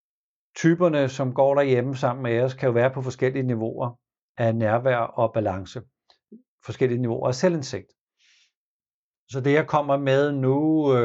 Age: 60-79